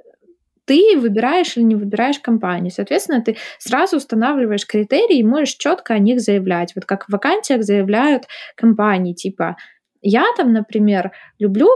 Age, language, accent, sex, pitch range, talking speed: 20-39, Ukrainian, native, female, 200-270 Hz, 145 wpm